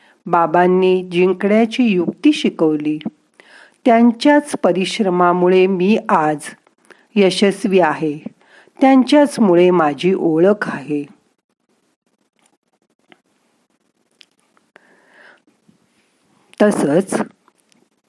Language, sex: Marathi, female